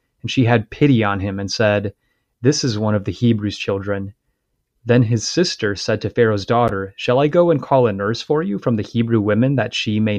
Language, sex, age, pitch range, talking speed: English, male, 30-49, 105-130 Hz, 225 wpm